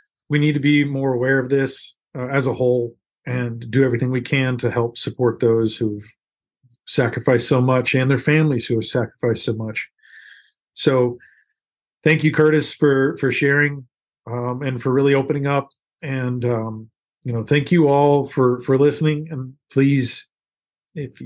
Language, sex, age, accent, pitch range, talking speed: English, male, 40-59, American, 125-140 Hz, 165 wpm